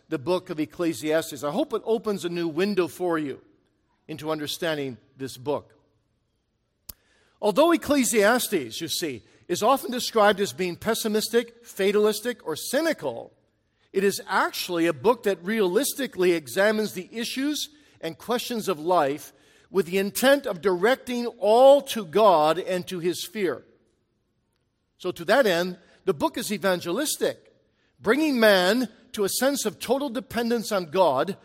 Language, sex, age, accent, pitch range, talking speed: English, male, 50-69, American, 165-235 Hz, 140 wpm